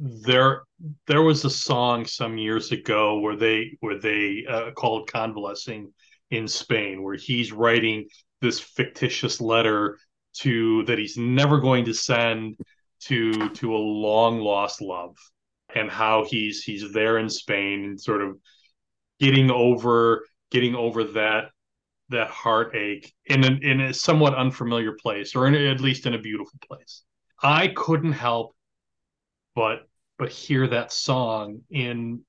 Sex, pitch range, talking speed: male, 110-135 Hz, 145 wpm